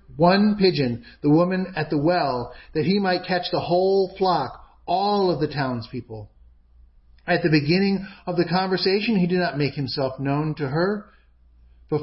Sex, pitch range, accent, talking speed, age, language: male, 120-175 Hz, American, 165 wpm, 50-69, English